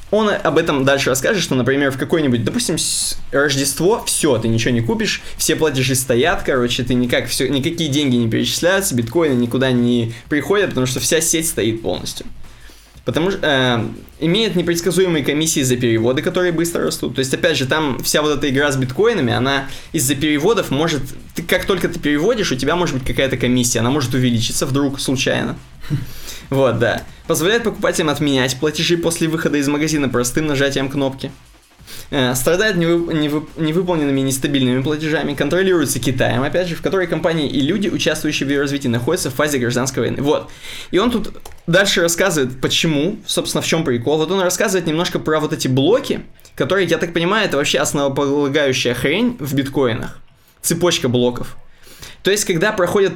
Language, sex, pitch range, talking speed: Russian, male, 130-165 Hz, 170 wpm